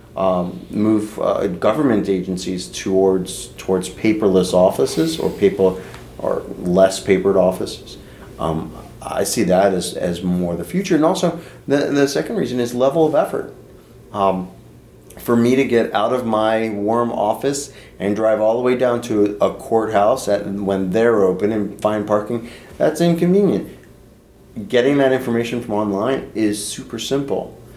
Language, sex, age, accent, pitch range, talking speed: English, male, 30-49, American, 95-120 Hz, 155 wpm